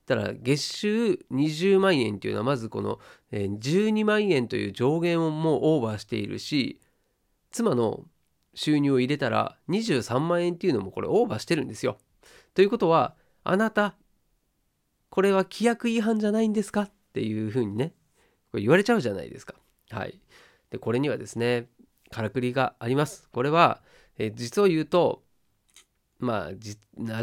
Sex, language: male, Japanese